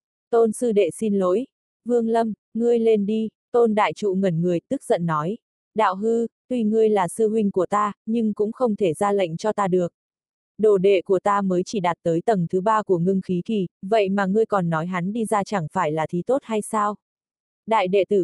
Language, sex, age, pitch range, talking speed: Vietnamese, female, 20-39, 185-225 Hz, 225 wpm